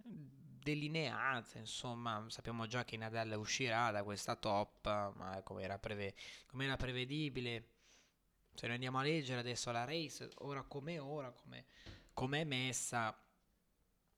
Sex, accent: male, native